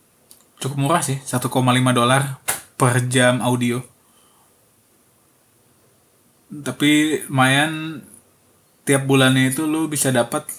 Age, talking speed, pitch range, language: 20-39, 90 wpm, 120-130 Hz, English